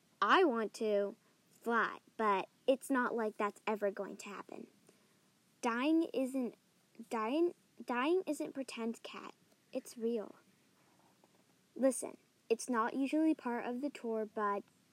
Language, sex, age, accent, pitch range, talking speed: English, female, 10-29, American, 210-275 Hz, 125 wpm